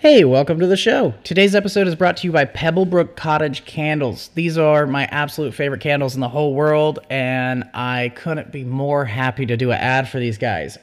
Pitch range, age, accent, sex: 125-155 Hz, 30-49, American, male